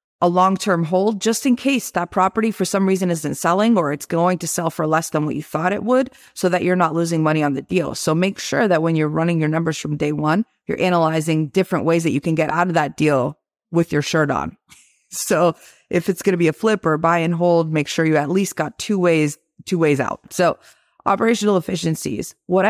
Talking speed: 240 wpm